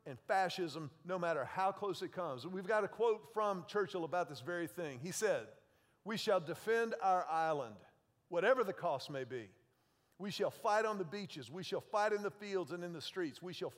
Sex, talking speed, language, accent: male, 210 wpm, English, American